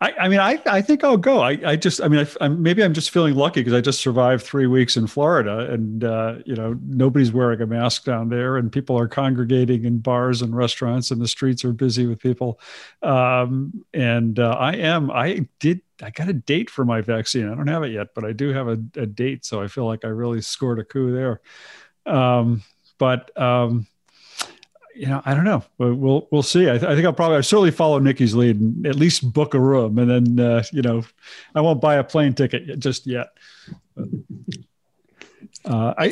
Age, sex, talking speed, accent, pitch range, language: 50-69, male, 215 wpm, American, 115-145 Hz, English